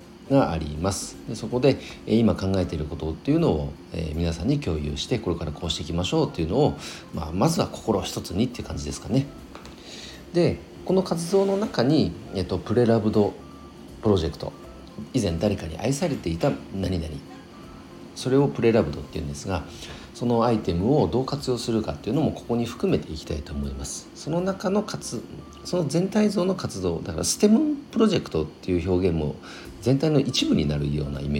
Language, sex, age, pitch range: Japanese, male, 40-59, 80-115 Hz